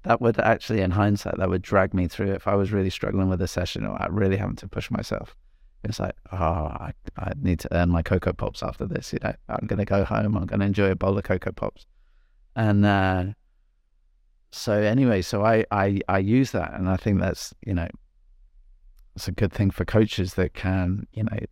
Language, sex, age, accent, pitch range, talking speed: English, male, 30-49, British, 95-110 Hz, 225 wpm